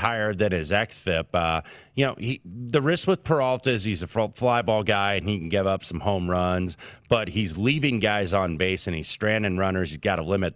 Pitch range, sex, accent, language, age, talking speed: 85-115 Hz, male, American, English, 30-49, 210 wpm